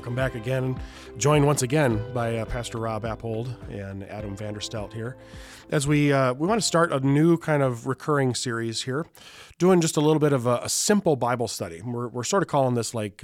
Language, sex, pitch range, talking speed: English, male, 110-140 Hz, 210 wpm